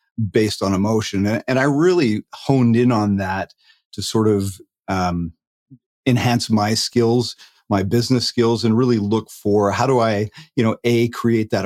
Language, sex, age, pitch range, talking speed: English, male, 40-59, 105-125 Hz, 165 wpm